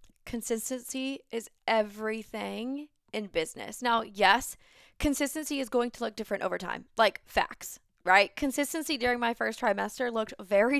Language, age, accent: English, 20-39, American